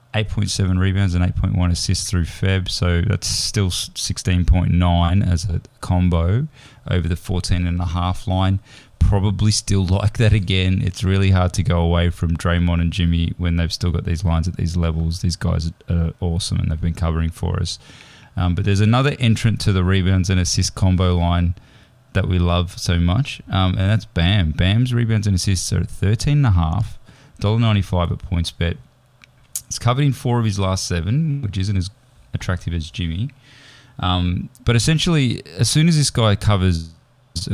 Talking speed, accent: 175 wpm, Australian